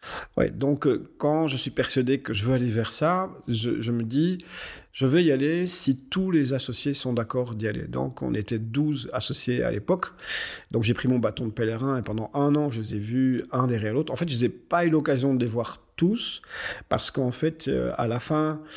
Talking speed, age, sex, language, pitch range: 230 wpm, 40-59, male, French, 115-140 Hz